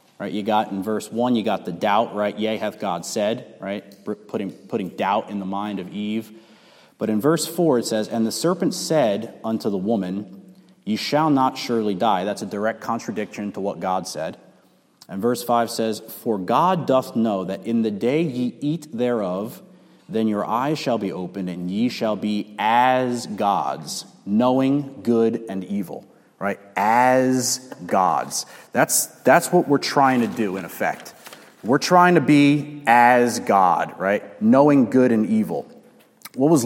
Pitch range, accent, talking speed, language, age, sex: 110-145 Hz, American, 175 wpm, English, 30-49, male